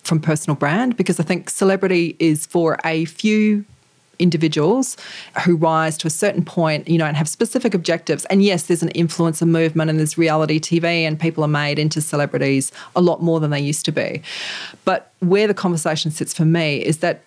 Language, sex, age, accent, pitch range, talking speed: English, female, 40-59, Australian, 155-180 Hz, 200 wpm